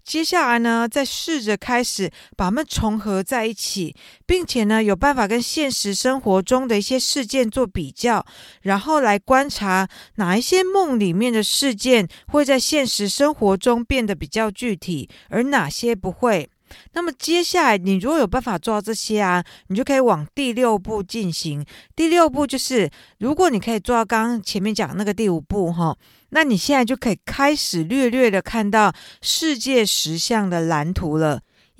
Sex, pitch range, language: female, 195-260 Hz, Chinese